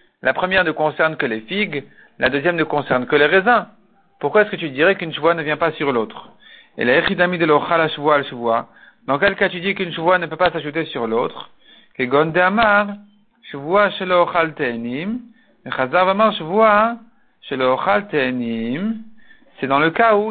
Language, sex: French, male